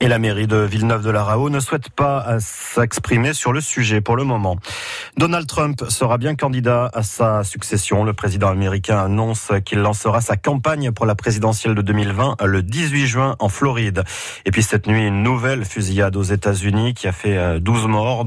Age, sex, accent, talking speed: 30-49, male, French, 180 wpm